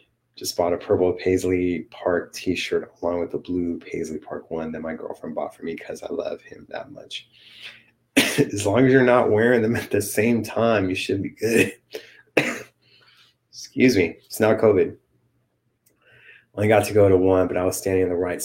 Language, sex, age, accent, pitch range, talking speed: English, male, 30-49, American, 85-100 Hz, 190 wpm